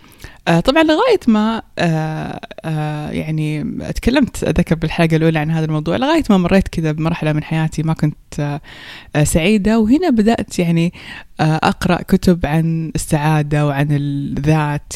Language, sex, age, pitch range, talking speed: Persian, female, 20-39, 155-195 Hz, 130 wpm